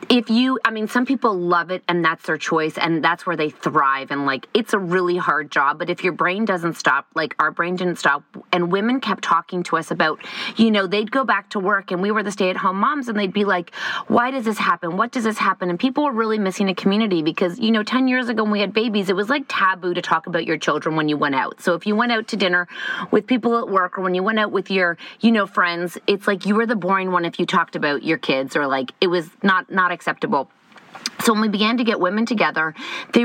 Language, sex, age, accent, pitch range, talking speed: English, female, 30-49, American, 175-225 Hz, 270 wpm